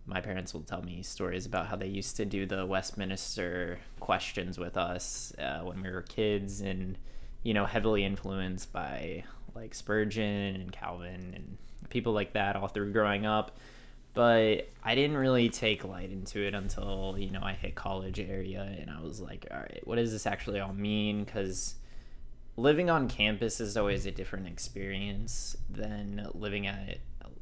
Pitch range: 95-110 Hz